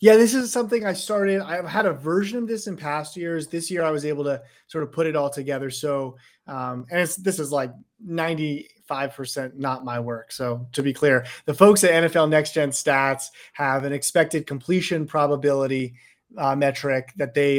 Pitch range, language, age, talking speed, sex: 140-170 Hz, English, 30-49, 200 wpm, male